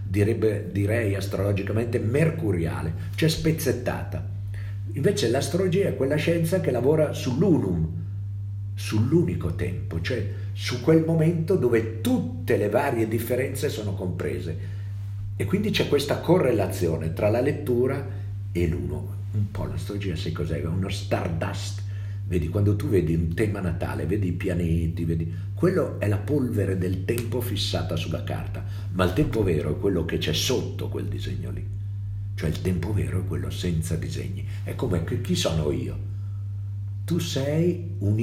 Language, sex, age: Italian, male, 50-69